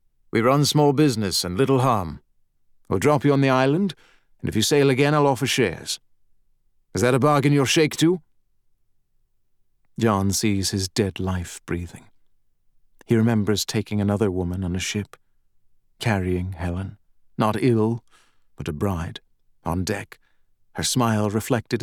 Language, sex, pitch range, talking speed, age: English, male, 100-130 Hz, 150 wpm, 40-59